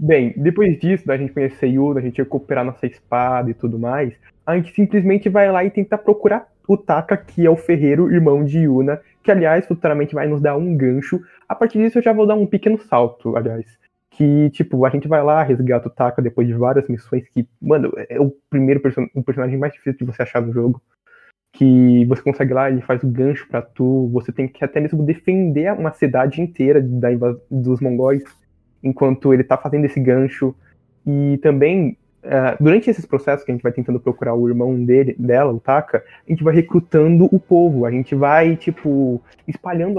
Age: 20-39